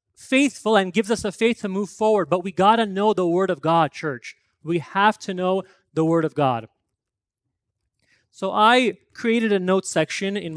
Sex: male